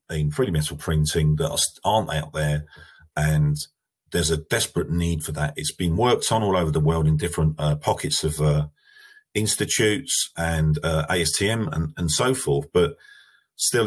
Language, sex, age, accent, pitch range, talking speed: English, male, 40-59, British, 75-105 Hz, 170 wpm